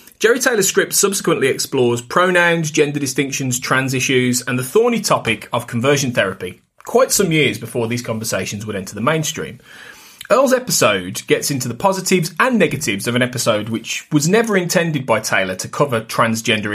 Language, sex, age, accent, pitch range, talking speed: English, male, 30-49, British, 115-175 Hz, 170 wpm